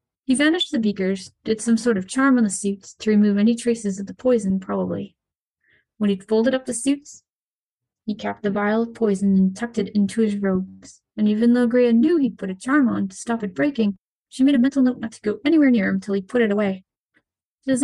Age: 30-49